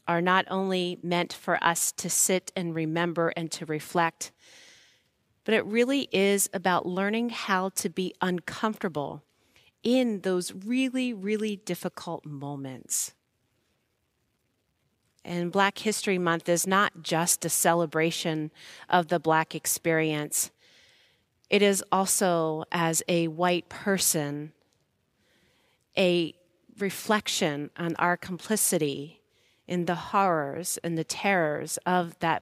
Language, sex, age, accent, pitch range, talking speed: English, female, 40-59, American, 155-190 Hz, 115 wpm